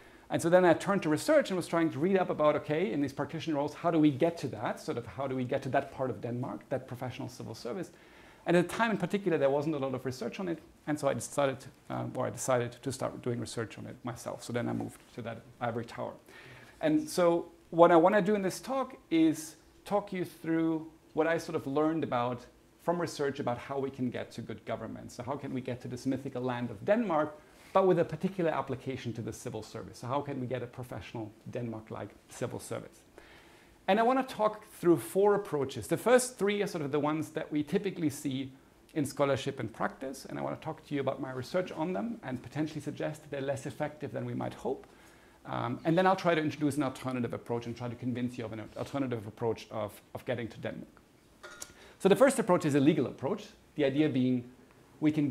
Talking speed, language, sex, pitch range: 240 wpm, English, male, 125-165 Hz